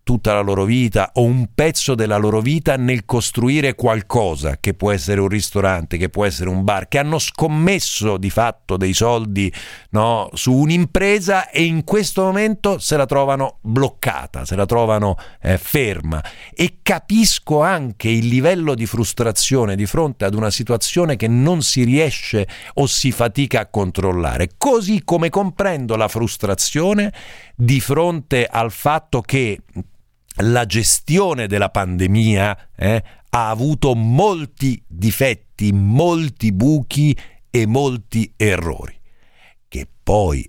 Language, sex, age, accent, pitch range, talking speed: Italian, male, 50-69, native, 105-150 Hz, 135 wpm